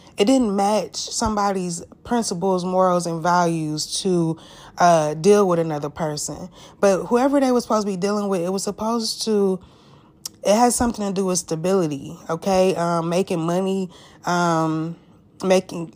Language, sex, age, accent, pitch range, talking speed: English, female, 20-39, American, 170-210 Hz, 150 wpm